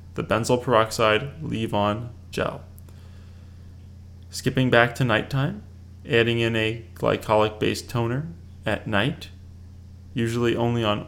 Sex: male